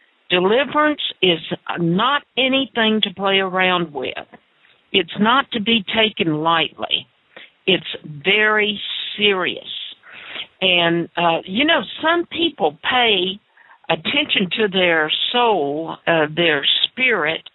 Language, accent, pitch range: English, American, 165-215 Hz